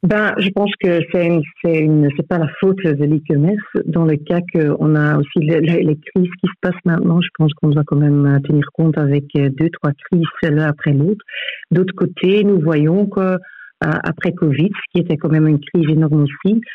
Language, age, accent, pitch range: French, 50-69, French, 150-180 Hz